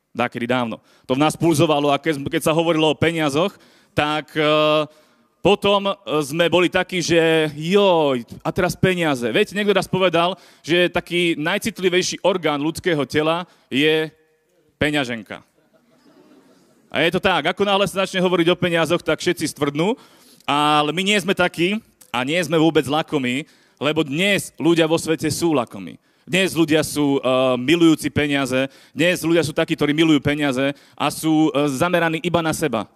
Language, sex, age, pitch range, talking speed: Slovak, male, 30-49, 145-175 Hz, 155 wpm